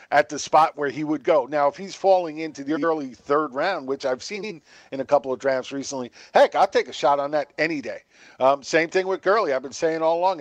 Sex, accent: male, American